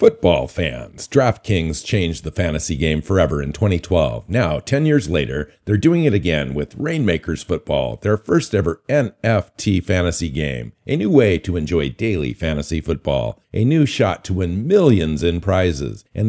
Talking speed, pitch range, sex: 160 wpm, 80-105 Hz, male